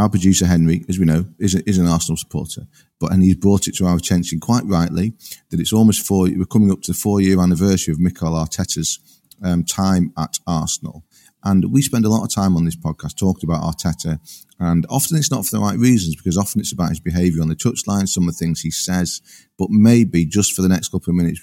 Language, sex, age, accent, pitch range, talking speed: English, male, 40-59, British, 85-95 Hz, 240 wpm